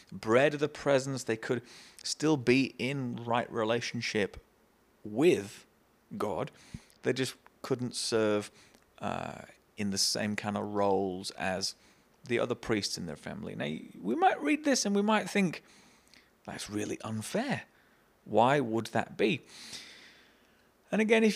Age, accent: 30-49, British